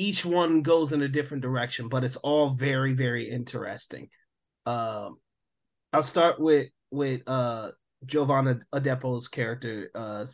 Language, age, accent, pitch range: English, 30-49, American, 130-155 Hz